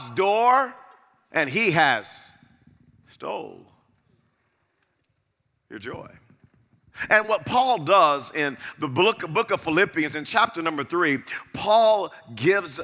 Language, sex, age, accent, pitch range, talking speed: English, male, 40-59, American, 130-205 Hz, 105 wpm